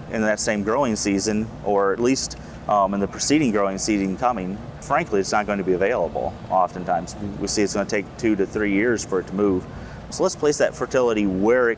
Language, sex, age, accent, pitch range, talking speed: English, male, 30-49, American, 100-120 Hz, 220 wpm